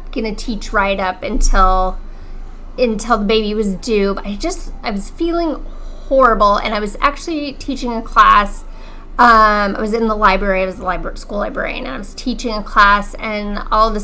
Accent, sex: American, female